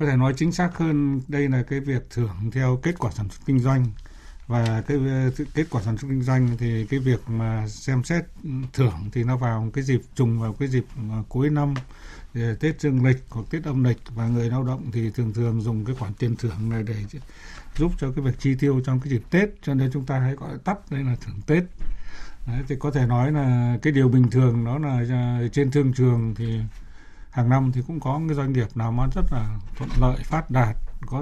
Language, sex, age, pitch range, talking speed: Vietnamese, male, 60-79, 120-145 Hz, 230 wpm